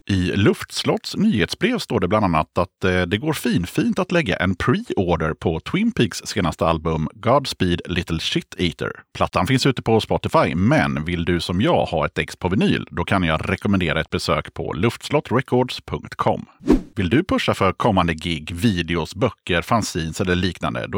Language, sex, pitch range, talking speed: Swedish, male, 85-120 Hz, 175 wpm